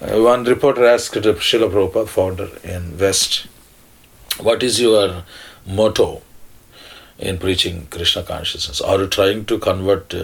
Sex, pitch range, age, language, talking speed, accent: male, 90-115 Hz, 40-59, Danish, 125 wpm, Indian